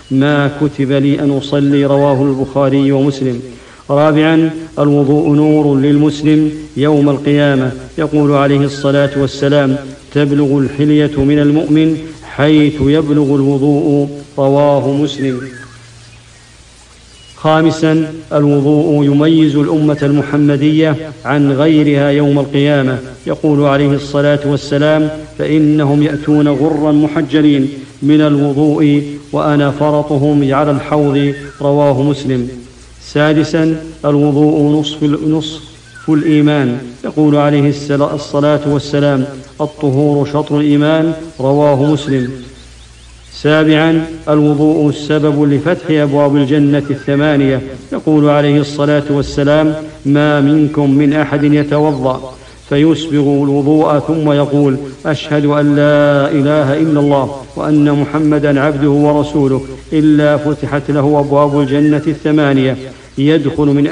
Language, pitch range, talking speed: English, 140-150 Hz, 100 wpm